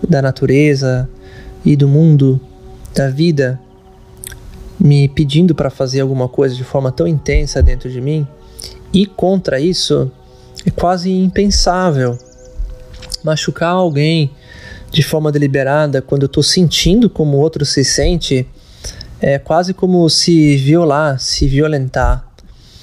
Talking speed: 125 wpm